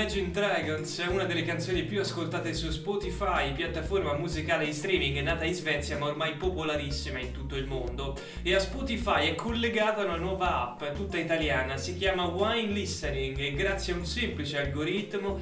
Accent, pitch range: native, 150-195 Hz